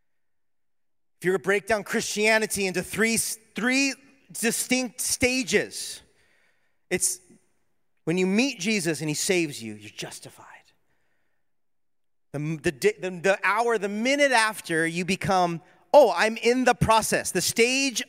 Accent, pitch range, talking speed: American, 155-220 Hz, 130 wpm